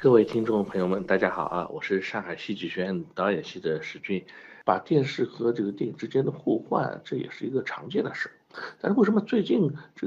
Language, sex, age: Chinese, male, 50-69